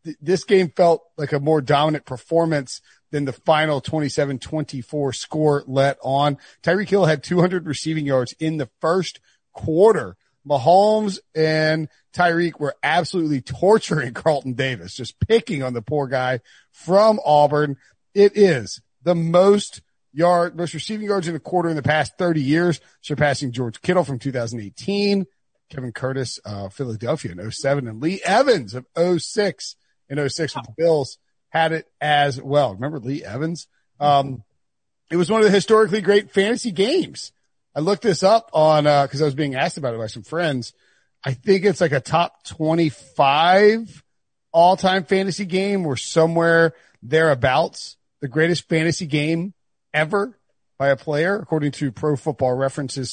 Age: 40-59